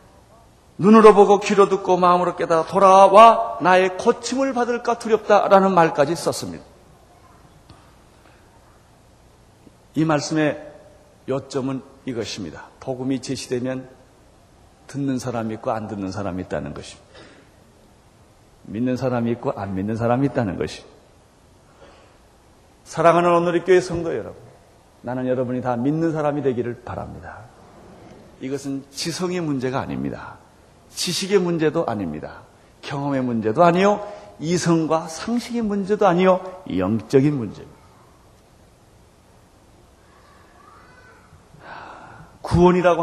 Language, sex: Korean, male